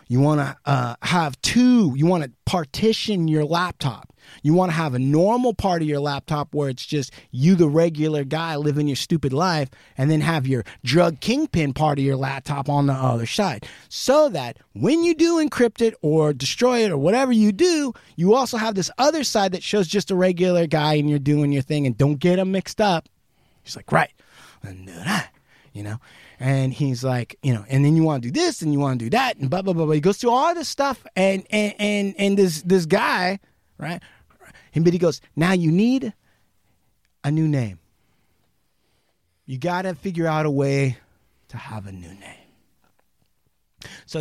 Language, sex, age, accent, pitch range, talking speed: English, male, 30-49, American, 135-190 Hz, 205 wpm